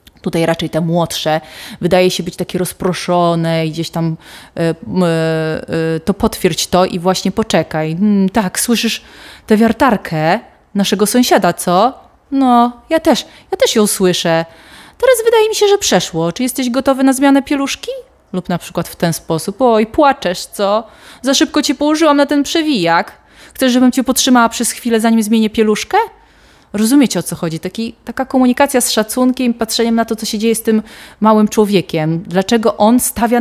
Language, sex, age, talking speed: Polish, female, 20-39, 160 wpm